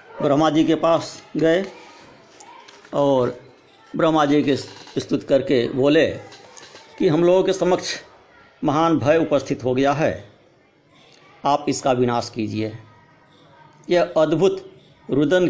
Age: 50-69